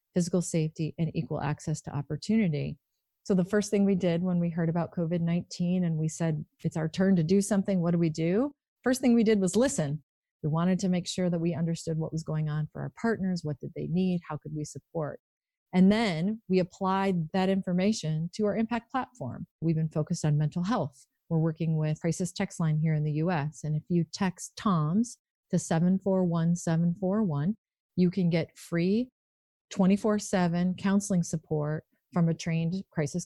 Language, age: English, 30-49